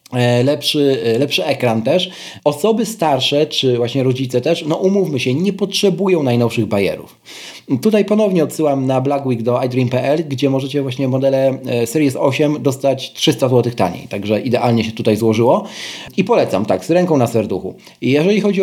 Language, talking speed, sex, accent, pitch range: Polish, 160 wpm, male, native, 125-165 Hz